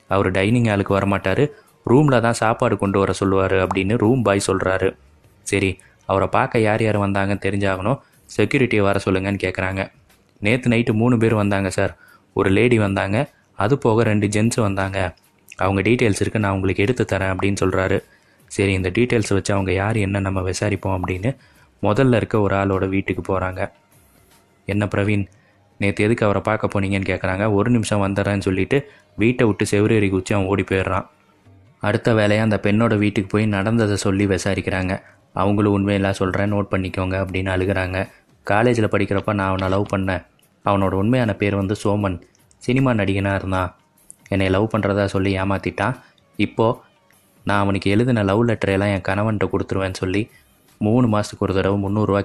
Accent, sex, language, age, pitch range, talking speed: native, male, Tamil, 20-39, 95-105 Hz, 155 wpm